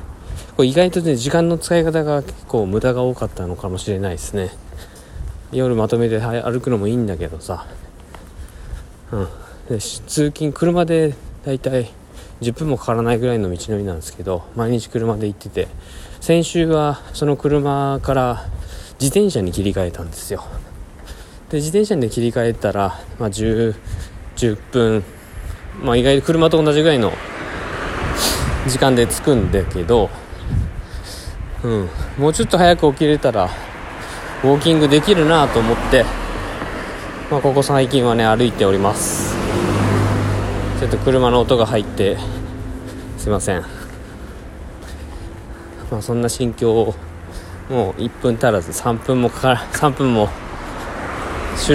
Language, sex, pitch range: Japanese, male, 90-135 Hz